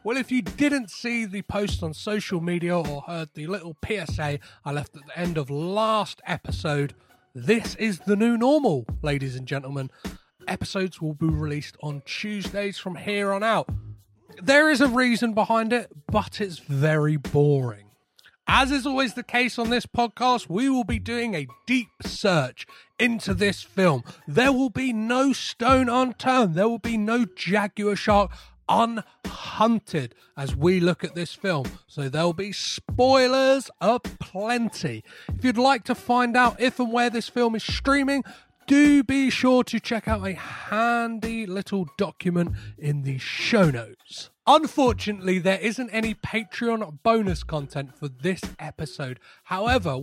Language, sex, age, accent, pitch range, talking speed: English, male, 30-49, British, 170-240 Hz, 155 wpm